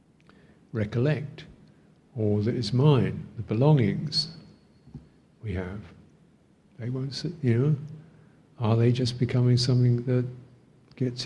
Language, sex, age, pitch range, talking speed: English, male, 50-69, 100-130 Hz, 100 wpm